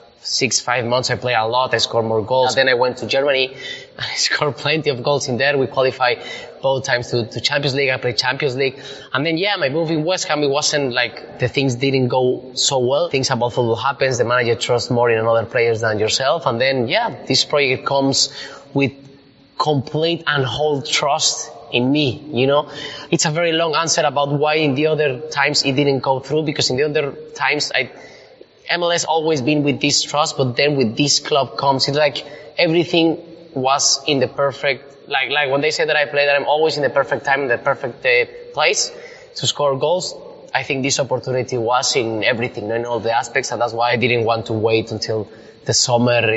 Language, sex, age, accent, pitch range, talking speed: English, male, 20-39, Spanish, 120-145 Hz, 215 wpm